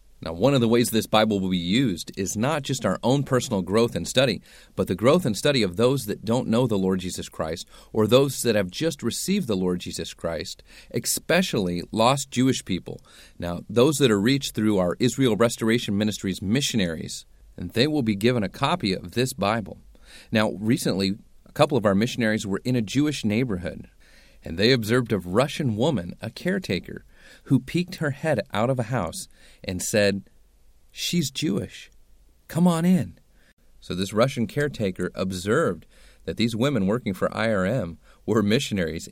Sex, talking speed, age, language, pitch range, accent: male, 180 wpm, 40-59, English, 90-125 Hz, American